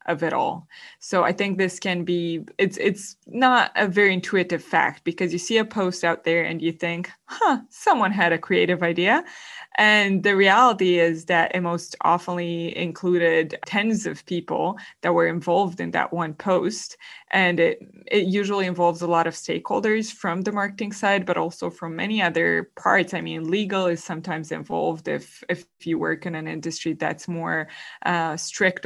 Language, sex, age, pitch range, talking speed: English, female, 20-39, 170-205 Hz, 180 wpm